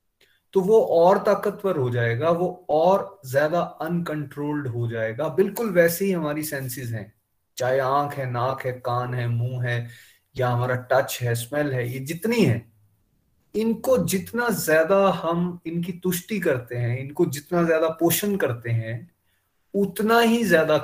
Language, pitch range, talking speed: Hindi, 120-175 Hz, 155 wpm